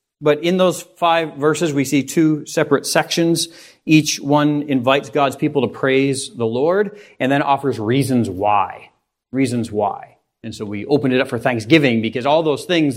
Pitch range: 120-155 Hz